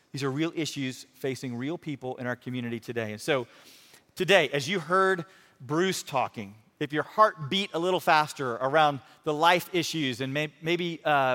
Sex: male